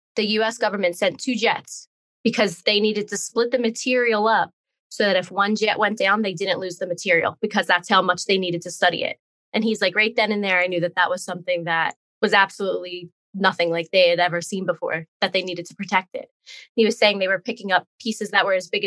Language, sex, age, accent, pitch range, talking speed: English, female, 20-39, American, 185-225 Hz, 240 wpm